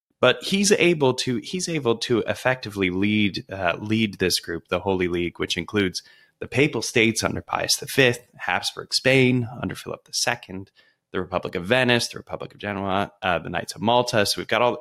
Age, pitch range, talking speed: 20-39, 90-120 Hz, 185 wpm